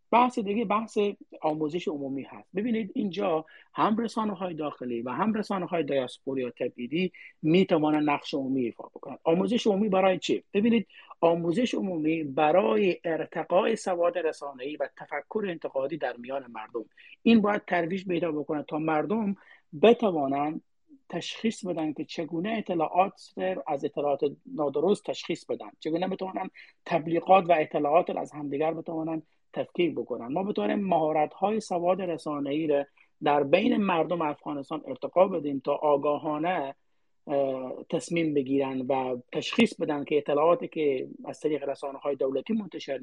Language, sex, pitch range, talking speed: Persian, male, 145-195 Hz, 135 wpm